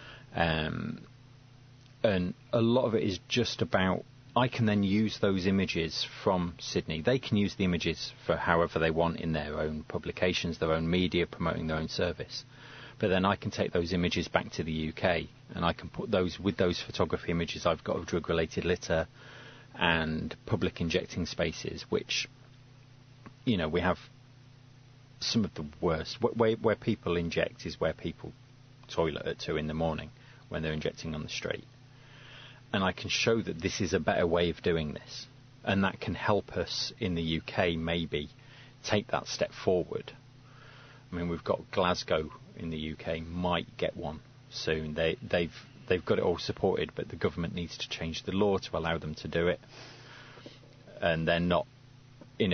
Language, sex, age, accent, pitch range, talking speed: English, male, 30-49, British, 80-125 Hz, 180 wpm